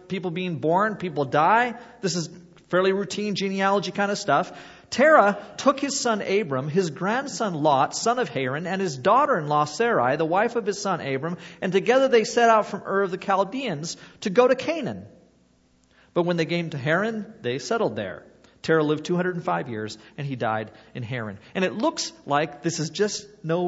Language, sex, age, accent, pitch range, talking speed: English, male, 40-59, American, 155-220 Hz, 190 wpm